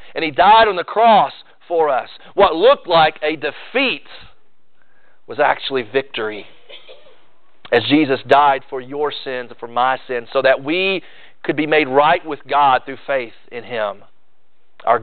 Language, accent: English, American